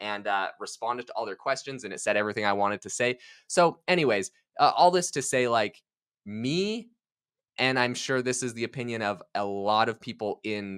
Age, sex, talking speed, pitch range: 20-39, male, 205 wpm, 105-155 Hz